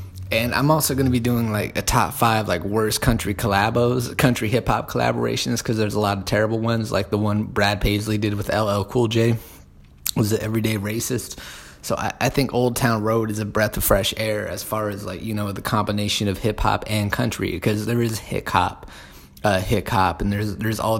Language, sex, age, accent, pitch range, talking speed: English, male, 20-39, American, 100-115 Hz, 220 wpm